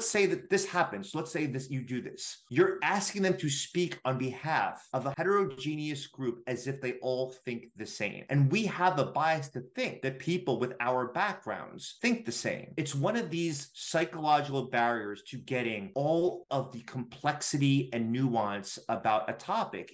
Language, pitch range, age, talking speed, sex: English, 120-155 Hz, 30-49, 185 wpm, male